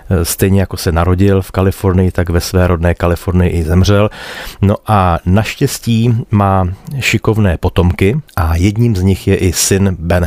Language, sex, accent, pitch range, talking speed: Czech, male, native, 95-115 Hz, 160 wpm